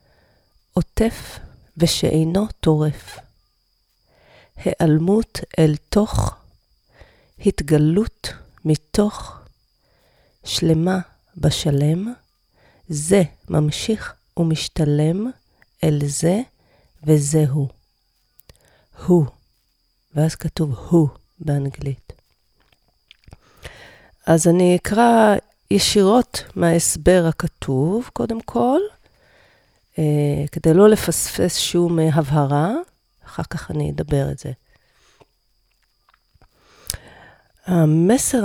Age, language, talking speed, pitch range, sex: 40-59, Hebrew, 65 wpm, 150-195 Hz, female